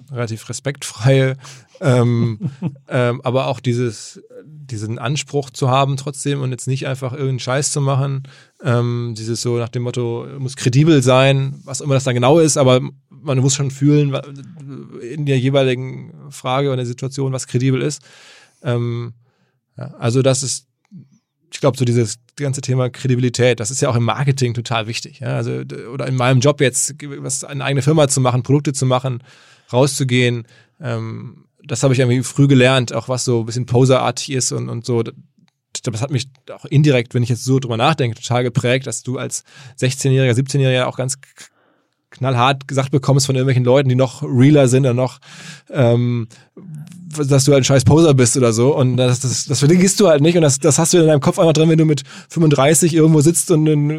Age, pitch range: 20-39, 125-150 Hz